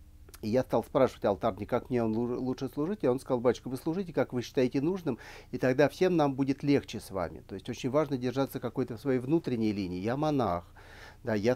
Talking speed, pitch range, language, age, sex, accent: 215 wpm, 100-135 Hz, Russian, 40-59, male, native